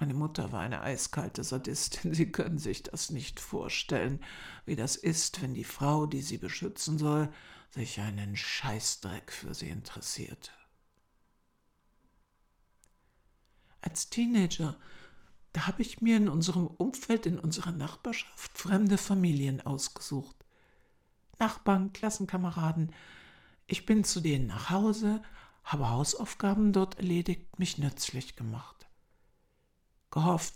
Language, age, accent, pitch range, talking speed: German, 60-79, German, 130-180 Hz, 115 wpm